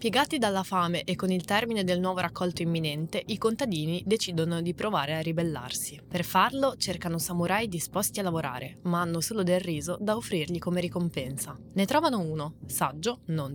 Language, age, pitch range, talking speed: Italian, 20-39, 155-190 Hz, 175 wpm